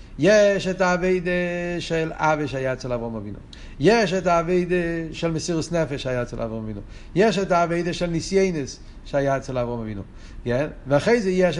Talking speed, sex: 155 wpm, male